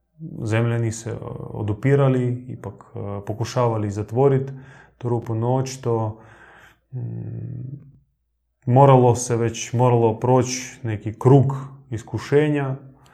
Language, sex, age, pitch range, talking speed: Croatian, male, 20-39, 115-130 Hz, 75 wpm